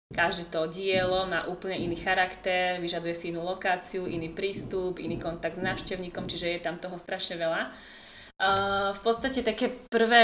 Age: 20-39